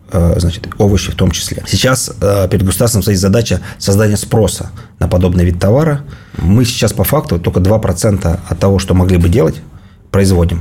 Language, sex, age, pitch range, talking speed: Russian, male, 30-49, 90-105 Hz, 165 wpm